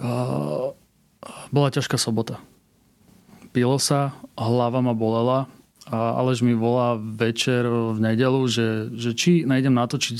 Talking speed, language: 110 wpm, Slovak